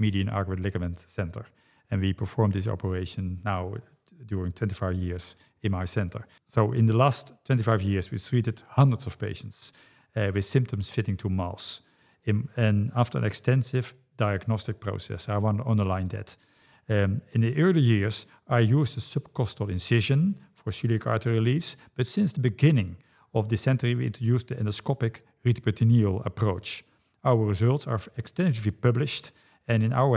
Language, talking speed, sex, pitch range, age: English, 160 wpm, male, 105-125 Hz, 50-69